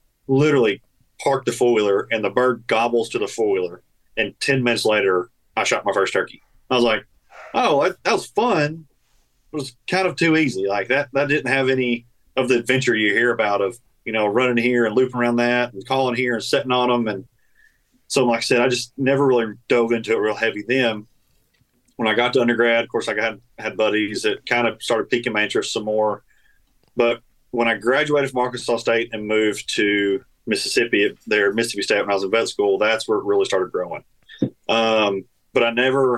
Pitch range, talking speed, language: 110-130 Hz, 210 wpm, English